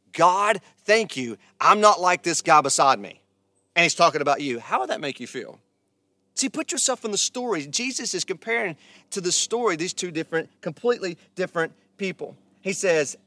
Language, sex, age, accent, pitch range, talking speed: English, male, 30-49, American, 130-185 Hz, 185 wpm